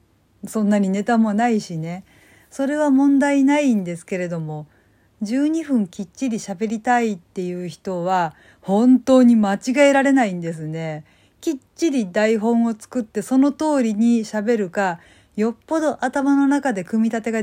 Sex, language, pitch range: female, Japanese, 185-255 Hz